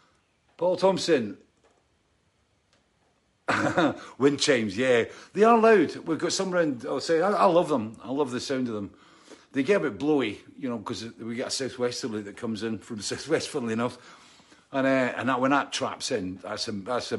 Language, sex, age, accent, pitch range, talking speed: English, male, 50-69, British, 105-130 Hz, 195 wpm